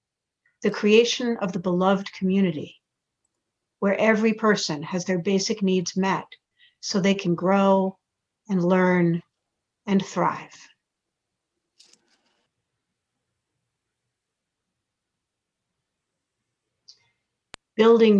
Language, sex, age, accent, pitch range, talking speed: English, female, 60-79, American, 175-205 Hz, 75 wpm